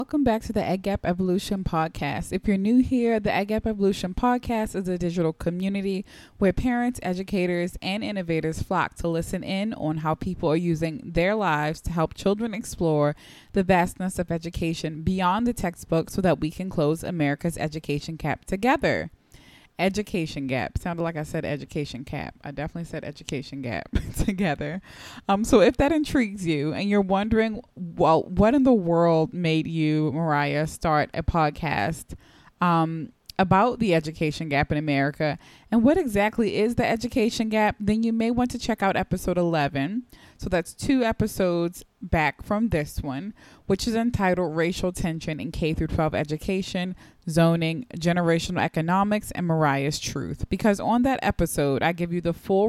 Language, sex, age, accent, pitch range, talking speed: English, female, 20-39, American, 160-215 Hz, 165 wpm